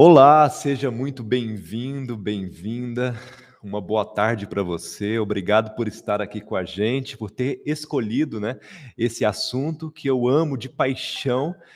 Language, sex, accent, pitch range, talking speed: Portuguese, male, Brazilian, 110-145 Hz, 145 wpm